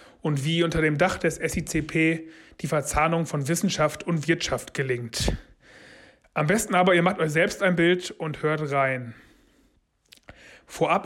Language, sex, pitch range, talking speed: German, male, 150-180 Hz, 145 wpm